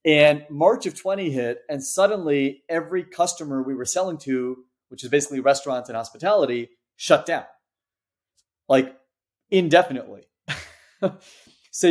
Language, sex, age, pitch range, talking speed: English, male, 30-49, 120-150 Hz, 120 wpm